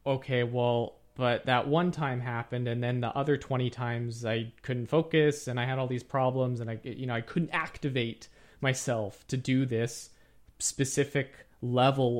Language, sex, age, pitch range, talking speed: English, male, 30-49, 120-150 Hz, 170 wpm